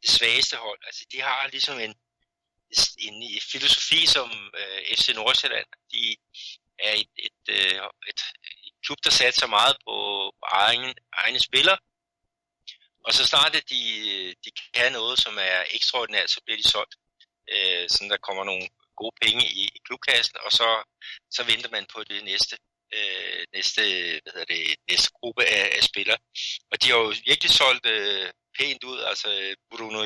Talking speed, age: 160 wpm, 60-79